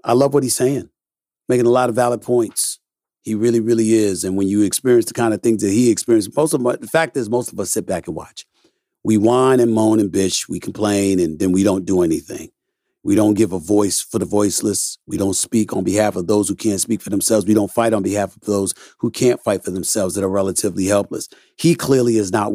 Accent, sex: American, male